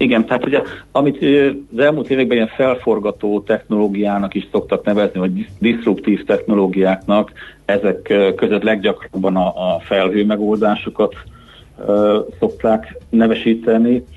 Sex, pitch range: male, 95-105 Hz